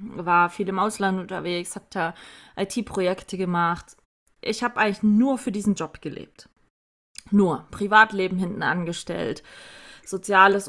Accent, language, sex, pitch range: German, German, female, 185-225 Hz